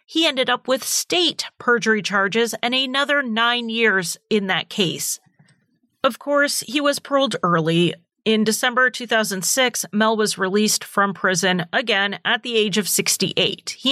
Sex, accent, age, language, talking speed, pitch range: female, American, 30-49, English, 150 wpm, 185-230 Hz